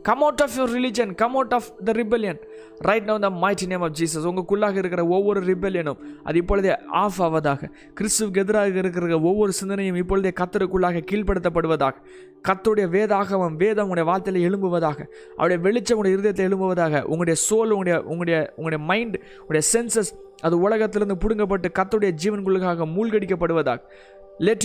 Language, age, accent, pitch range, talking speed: Tamil, 20-39, native, 185-225 Hz, 195 wpm